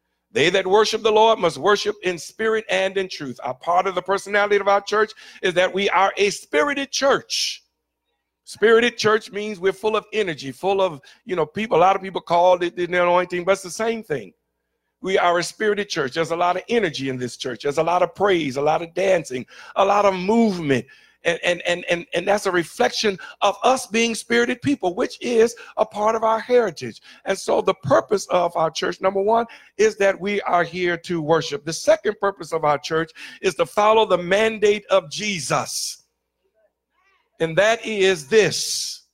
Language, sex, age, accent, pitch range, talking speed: English, male, 60-79, American, 175-220 Hz, 200 wpm